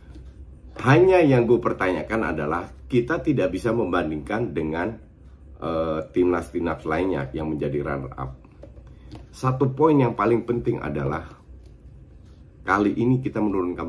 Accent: native